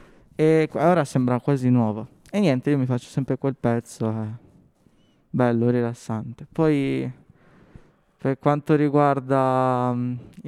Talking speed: 130 wpm